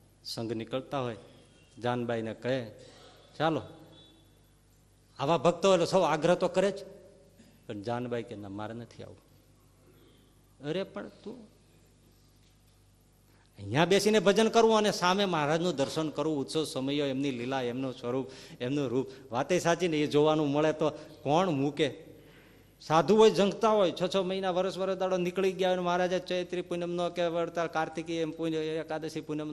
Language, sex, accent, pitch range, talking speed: Gujarati, male, native, 115-165 Hz, 140 wpm